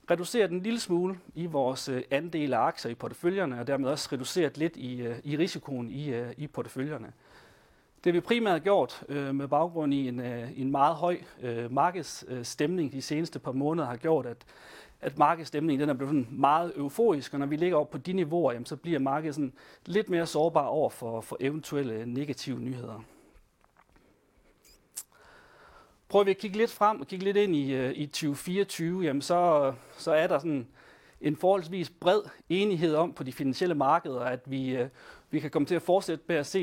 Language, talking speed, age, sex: Danish, 180 wpm, 40-59, male